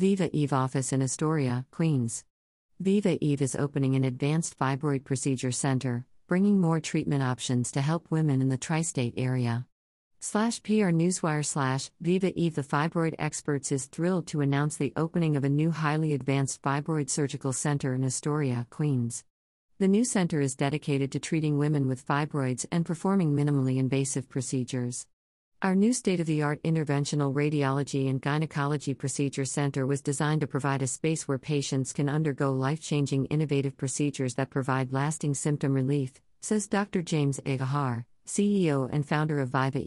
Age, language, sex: 50-69, English, female